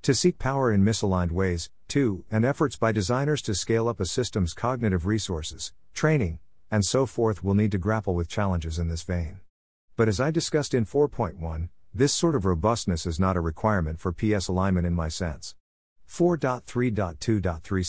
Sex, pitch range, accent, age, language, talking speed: male, 90-120 Hz, American, 50-69, English, 175 wpm